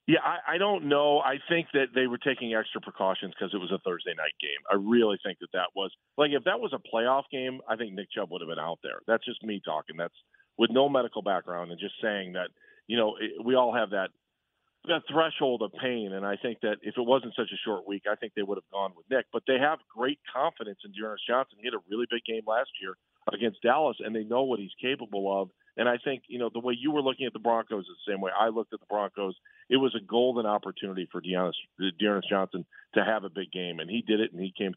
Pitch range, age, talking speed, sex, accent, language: 95-120 Hz, 40-59, 260 wpm, male, American, English